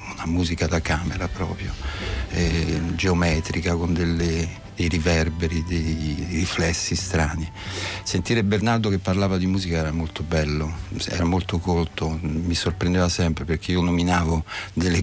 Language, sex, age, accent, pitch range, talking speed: Italian, male, 60-79, native, 80-100 Hz, 135 wpm